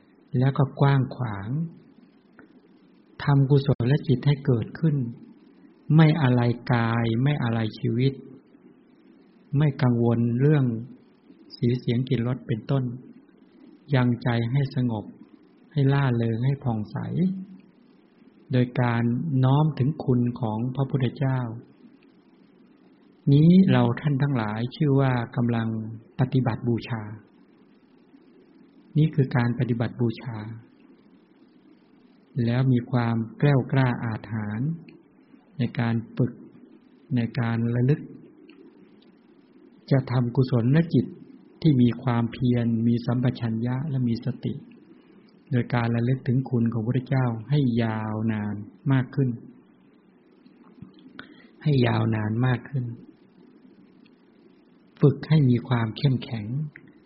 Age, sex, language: 60-79, male, English